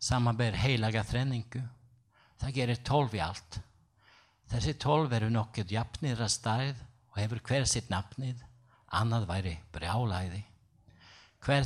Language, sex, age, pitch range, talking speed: English, male, 60-79, 105-125 Hz, 155 wpm